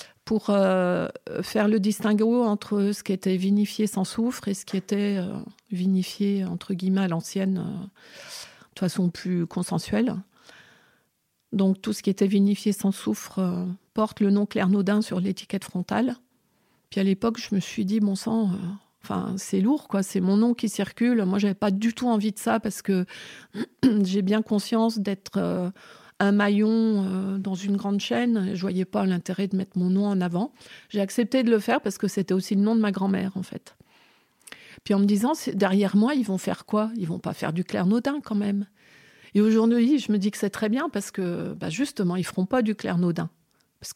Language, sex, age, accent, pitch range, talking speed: French, female, 50-69, French, 190-220 Hz, 205 wpm